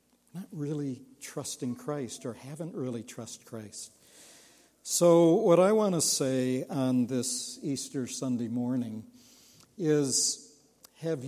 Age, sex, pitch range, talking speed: 60-79, male, 140-200 Hz, 115 wpm